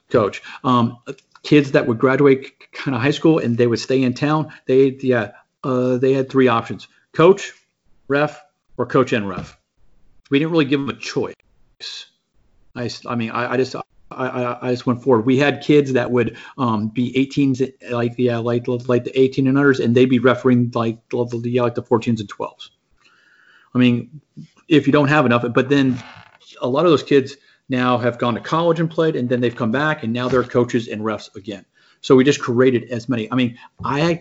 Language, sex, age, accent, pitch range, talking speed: English, male, 40-59, American, 120-140 Hz, 205 wpm